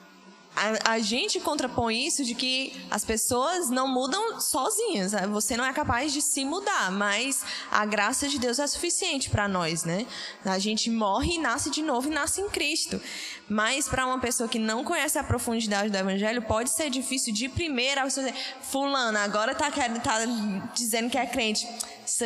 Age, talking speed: 10-29, 180 wpm